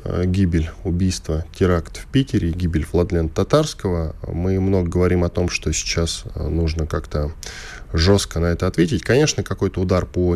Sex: male